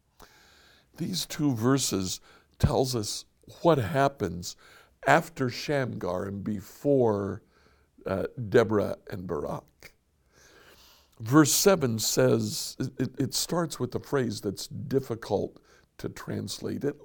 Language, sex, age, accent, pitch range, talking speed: English, male, 60-79, American, 80-130 Hz, 100 wpm